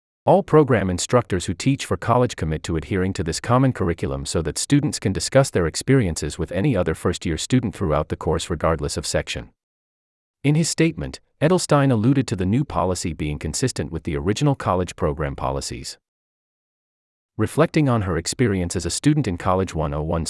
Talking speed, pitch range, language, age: 175 wpm, 75-125 Hz, English, 40-59